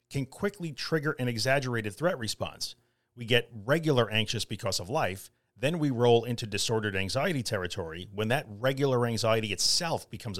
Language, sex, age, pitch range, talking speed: English, male, 40-59, 110-140 Hz, 155 wpm